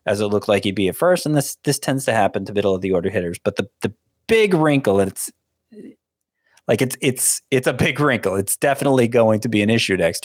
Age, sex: 30-49, male